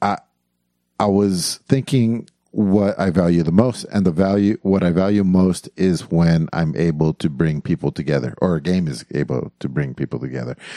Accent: American